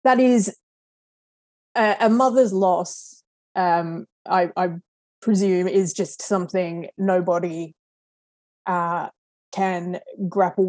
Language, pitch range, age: English, 175-200 Hz, 20-39